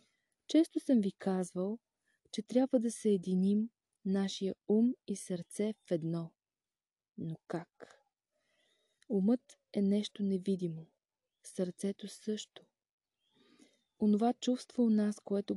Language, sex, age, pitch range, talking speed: Bulgarian, female, 20-39, 185-230 Hz, 105 wpm